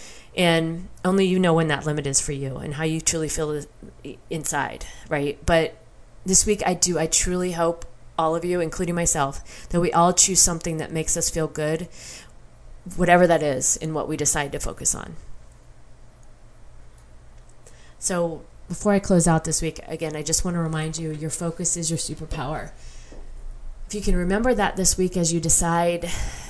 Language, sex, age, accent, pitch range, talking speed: English, female, 30-49, American, 155-175 Hz, 180 wpm